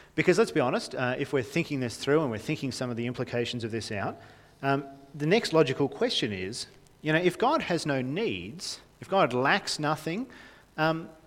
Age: 40-59